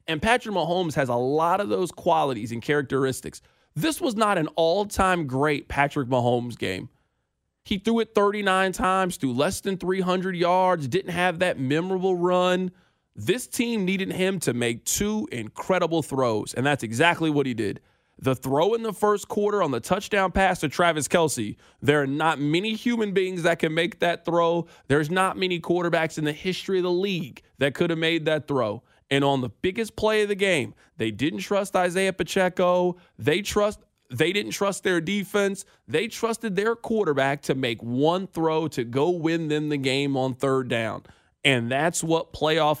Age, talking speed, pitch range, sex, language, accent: 20-39, 185 wpm, 145-190 Hz, male, English, American